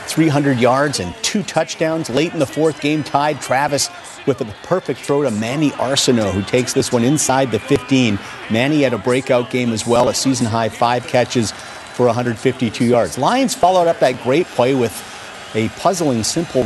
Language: English